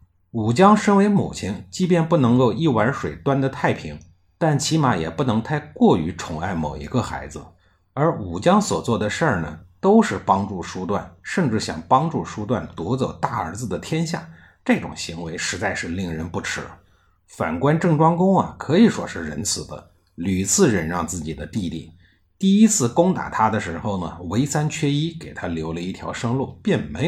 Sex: male